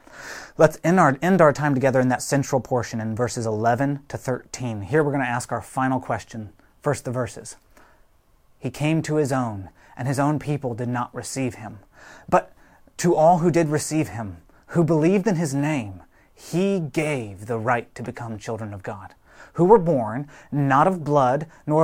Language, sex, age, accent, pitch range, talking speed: English, male, 30-49, American, 120-160 Hz, 185 wpm